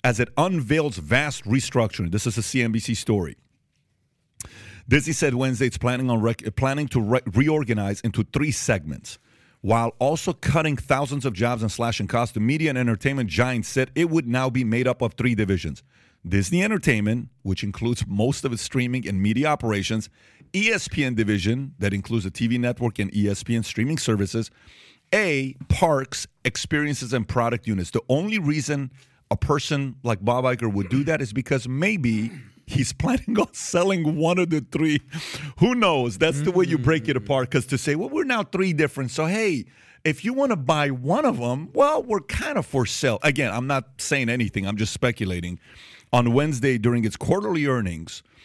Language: English